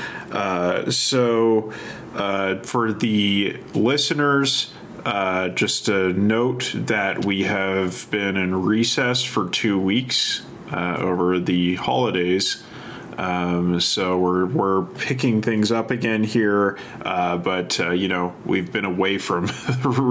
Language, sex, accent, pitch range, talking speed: English, male, American, 95-125 Hz, 125 wpm